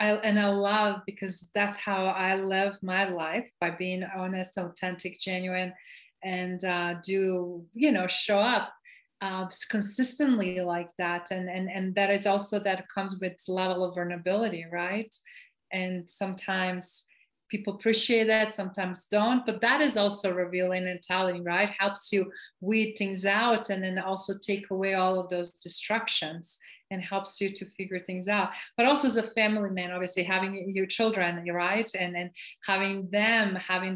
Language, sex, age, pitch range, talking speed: English, female, 30-49, 180-205 Hz, 165 wpm